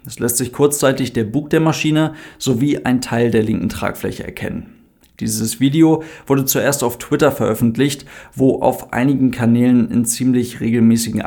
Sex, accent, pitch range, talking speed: male, German, 115-135 Hz, 155 wpm